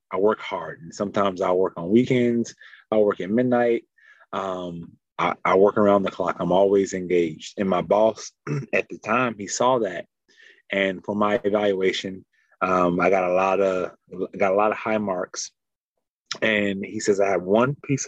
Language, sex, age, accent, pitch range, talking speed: English, male, 20-39, American, 95-105 Hz, 185 wpm